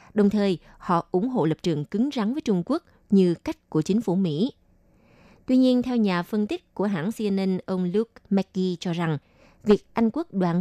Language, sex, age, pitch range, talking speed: Vietnamese, female, 20-39, 175-230 Hz, 205 wpm